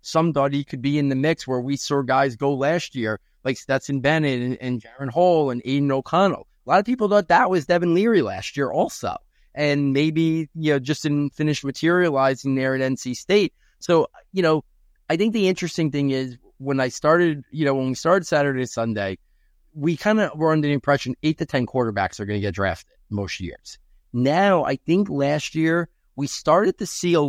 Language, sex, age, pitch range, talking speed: English, male, 30-49, 125-160 Hz, 210 wpm